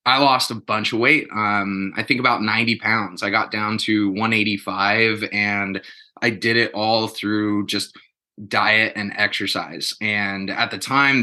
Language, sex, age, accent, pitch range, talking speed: English, male, 20-39, American, 100-115 Hz, 165 wpm